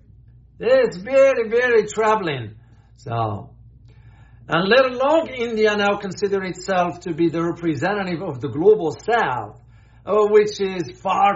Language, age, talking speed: English, 60-79, 120 wpm